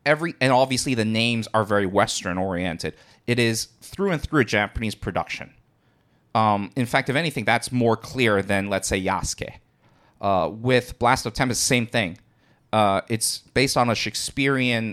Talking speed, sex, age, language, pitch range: 165 wpm, male, 30-49, English, 100-125 Hz